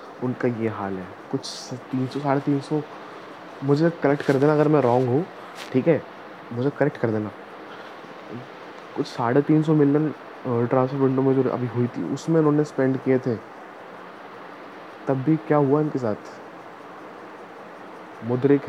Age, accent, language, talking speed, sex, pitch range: 20-39, native, Hindi, 155 wpm, male, 130-155 Hz